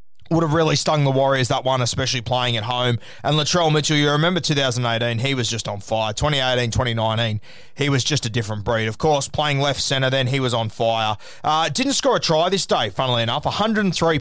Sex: male